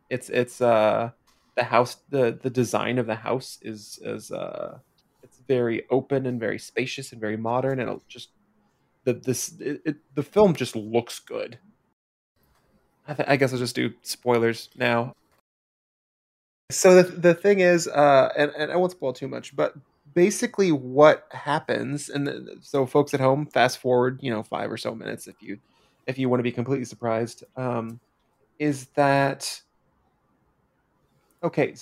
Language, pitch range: English, 120-150 Hz